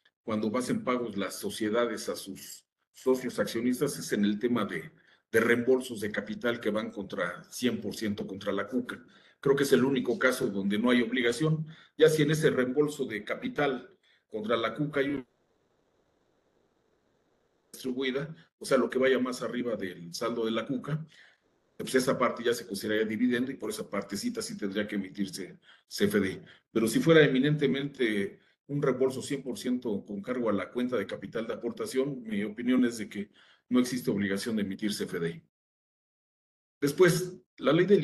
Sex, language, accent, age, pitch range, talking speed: male, Spanish, Mexican, 50-69, 110-150 Hz, 170 wpm